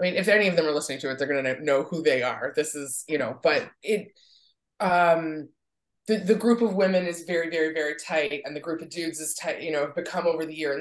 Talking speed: 265 wpm